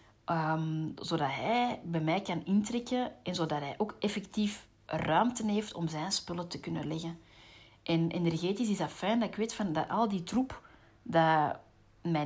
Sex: female